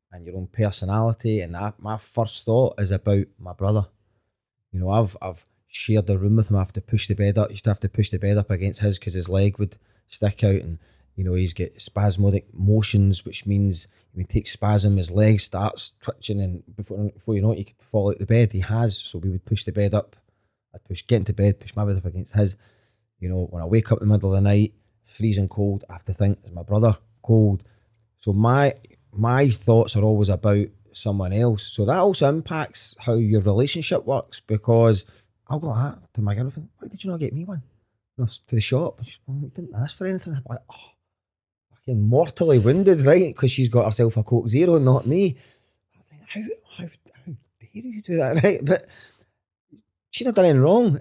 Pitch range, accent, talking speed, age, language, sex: 100-130 Hz, British, 215 wpm, 20-39, English, male